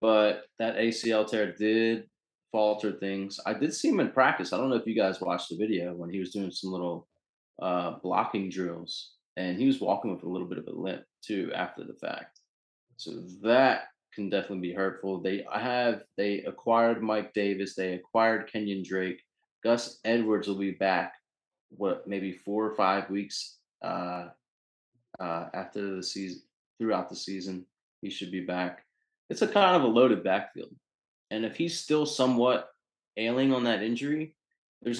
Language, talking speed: English, 175 wpm